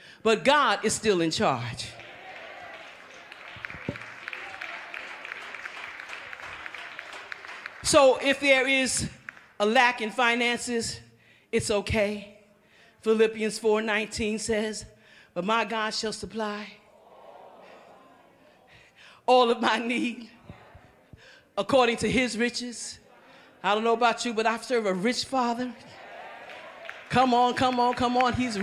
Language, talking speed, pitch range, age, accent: English, 105 wpm, 220-270 Hz, 40-59, American